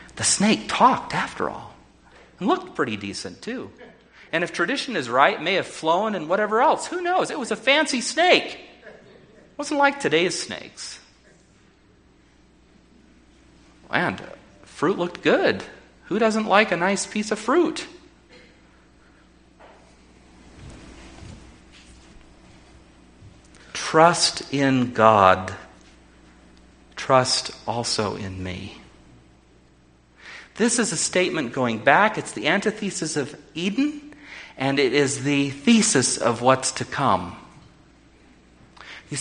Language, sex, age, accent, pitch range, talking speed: English, male, 40-59, American, 105-175 Hz, 115 wpm